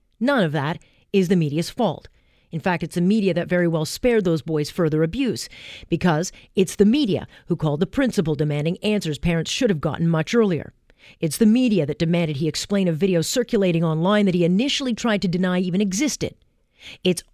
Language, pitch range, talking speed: English, 165-210 Hz, 195 wpm